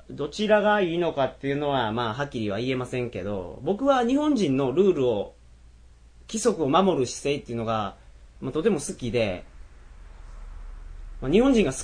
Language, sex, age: Japanese, male, 30-49